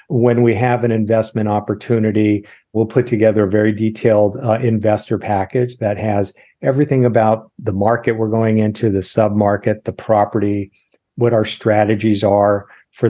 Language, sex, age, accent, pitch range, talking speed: English, male, 50-69, American, 100-115 Hz, 150 wpm